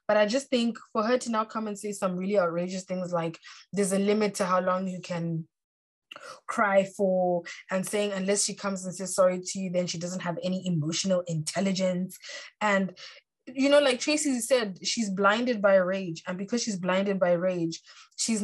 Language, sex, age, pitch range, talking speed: English, female, 20-39, 185-215 Hz, 195 wpm